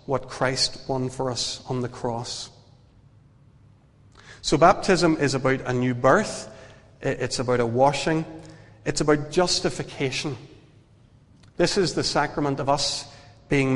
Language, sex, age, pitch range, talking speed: English, male, 40-59, 125-155 Hz, 125 wpm